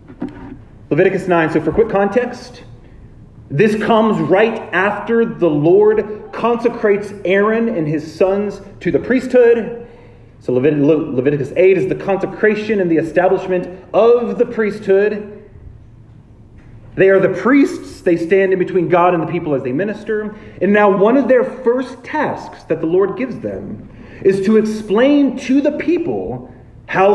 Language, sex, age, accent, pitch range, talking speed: English, male, 30-49, American, 130-215 Hz, 150 wpm